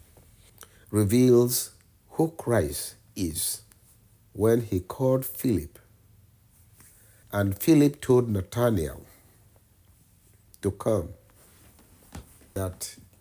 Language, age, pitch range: English, 60-79, 95-110 Hz